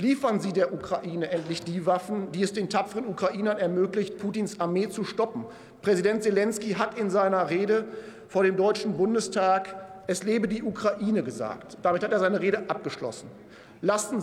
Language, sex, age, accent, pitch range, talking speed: German, male, 40-59, German, 195-230 Hz, 165 wpm